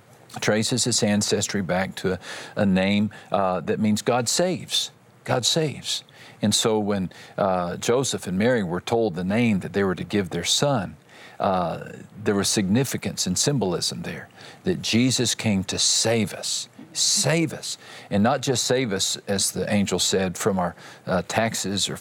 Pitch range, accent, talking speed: 95-120 Hz, American, 170 wpm